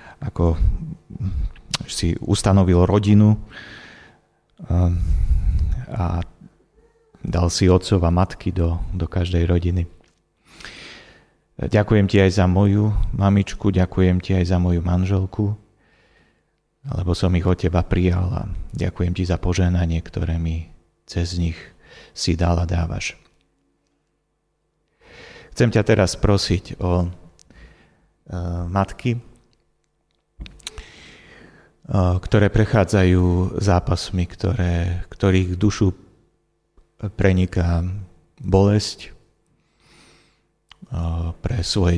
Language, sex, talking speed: Slovak, male, 85 wpm